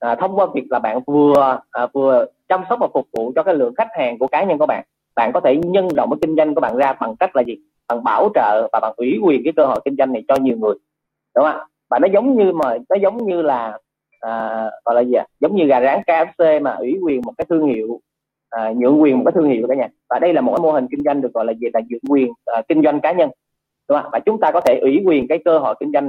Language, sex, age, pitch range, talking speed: Vietnamese, male, 20-39, 130-170 Hz, 290 wpm